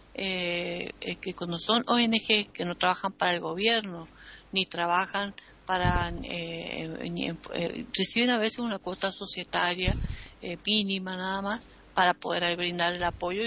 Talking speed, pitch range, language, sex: 160 wpm, 185-235 Hz, Spanish, female